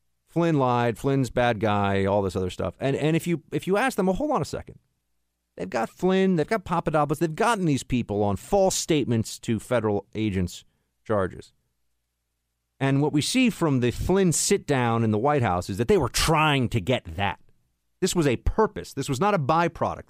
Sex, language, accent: male, English, American